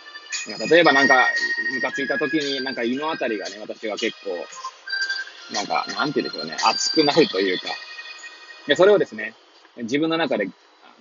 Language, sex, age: Japanese, male, 20-39